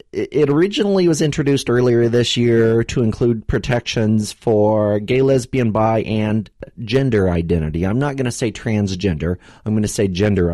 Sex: male